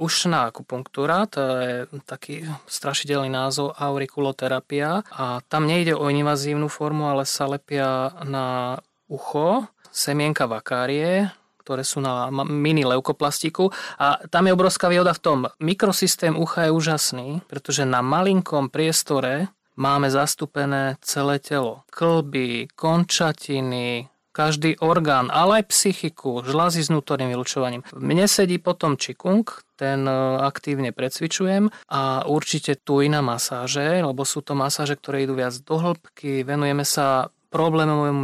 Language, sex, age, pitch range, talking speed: Slovak, male, 30-49, 135-165 Hz, 125 wpm